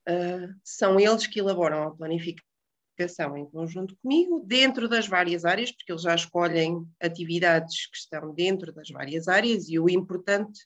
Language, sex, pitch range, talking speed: Portuguese, female, 165-210 Hz, 150 wpm